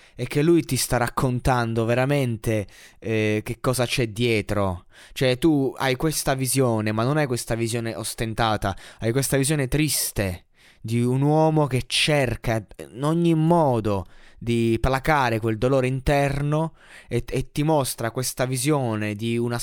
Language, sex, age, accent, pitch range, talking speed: Italian, male, 20-39, native, 115-140 Hz, 145 wpm